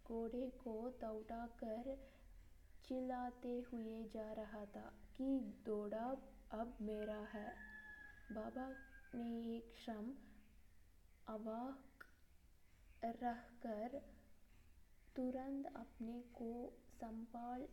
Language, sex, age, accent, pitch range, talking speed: Hindi, female, 20-39, native, 220-255 Hz, 85 wpm